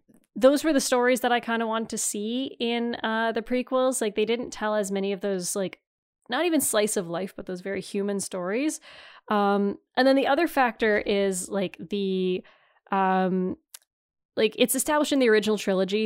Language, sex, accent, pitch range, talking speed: English, female, American, 200-260 Hz, 190 wpm